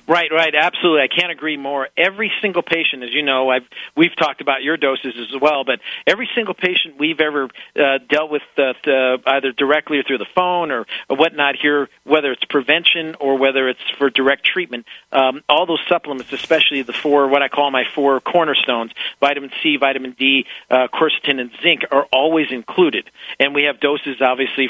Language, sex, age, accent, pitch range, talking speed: English, male, 40-59, American, 130-155 Hz, 190 wpm